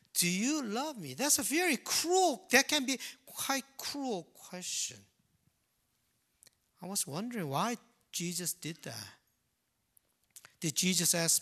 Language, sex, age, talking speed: English, male, 50-69, 125 wpm